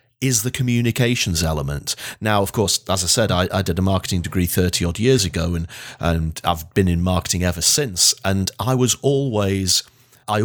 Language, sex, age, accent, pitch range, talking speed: English, male, 40-59, British, 90-130 Hz, 190 wpm